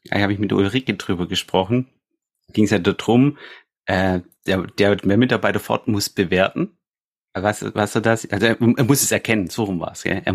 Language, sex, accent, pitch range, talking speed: German, male, German, 90-115 Hz, 195 wpm